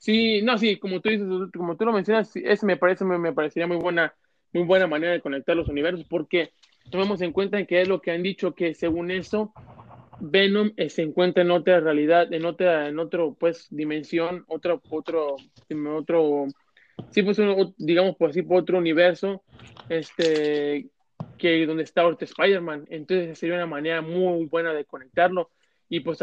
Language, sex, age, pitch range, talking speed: Spanish, male, 20-39, 160-185 Hz, 180 wpm